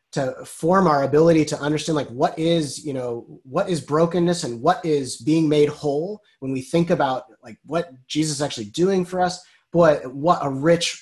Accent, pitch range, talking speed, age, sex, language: American, 125-155 Hz, 195 wpm, 30-49, male, English